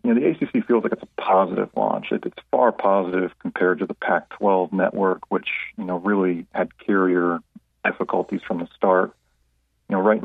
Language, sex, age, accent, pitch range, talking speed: English, male, 40-59, American, 90-105 Hz, 180 wpm